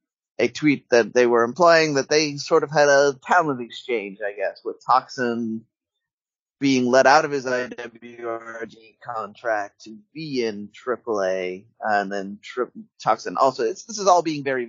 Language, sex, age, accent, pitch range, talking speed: English, male, 30-49, American, 105-140 Hz, 165 wpm